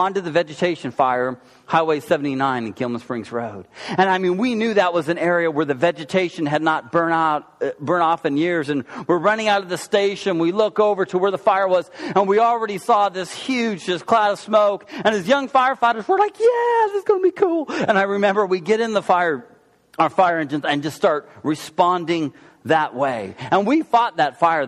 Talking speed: 215 wpm